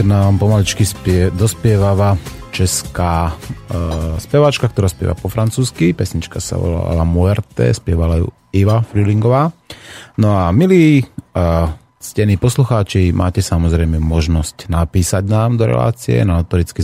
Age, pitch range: 30-49, 85-115 Hz